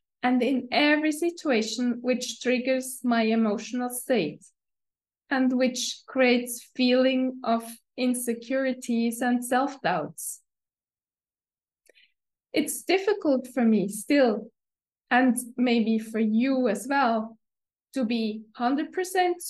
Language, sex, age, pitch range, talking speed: English, female, 20-39, 230-275 Hz, 95 wpm